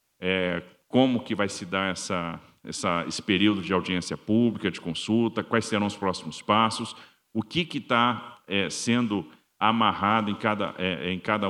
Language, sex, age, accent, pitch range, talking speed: Portuguese, male, 50-69, Brazilian, 95-115 Hz, 160 wpm